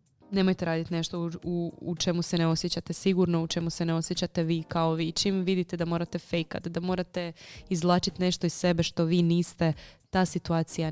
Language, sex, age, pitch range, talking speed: Croatian, female, 20-39, 165-185 Hz, 190 wpm